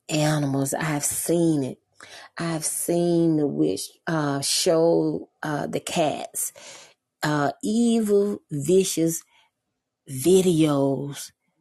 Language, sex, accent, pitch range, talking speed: English, female, American, 140-165 Hz, 90 wpm